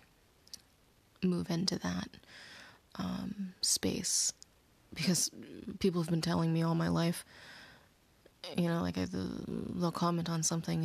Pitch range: 160-185 Hz